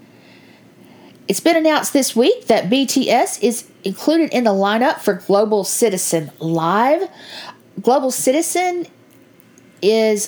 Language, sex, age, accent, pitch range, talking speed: English, female, 40-59, American, 200-265 Hz, 110 wpm